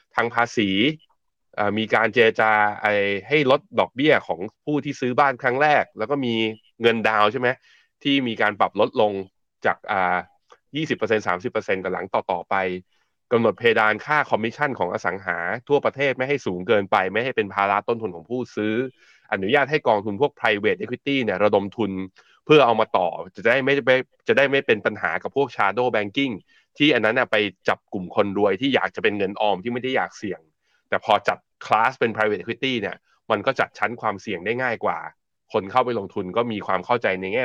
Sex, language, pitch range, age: male, Thai, 100-130 Hz, 20-39